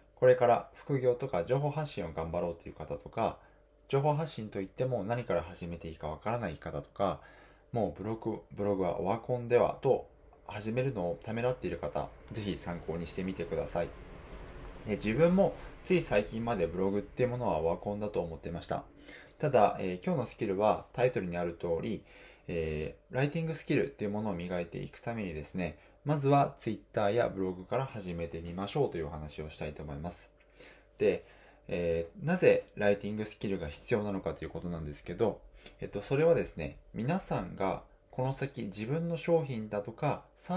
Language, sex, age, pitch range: Japanese, male, 20-39, 85-125 Hz